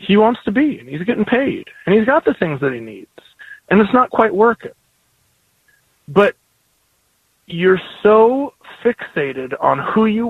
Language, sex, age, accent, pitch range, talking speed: English, male, 30-49, American, 150-210 Hz, 165 wpm